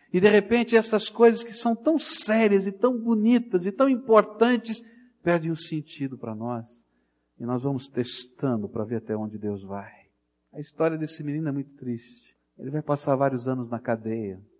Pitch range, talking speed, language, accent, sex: 115-170 Hz, 185 wpm, Portuguese, Brazilian, male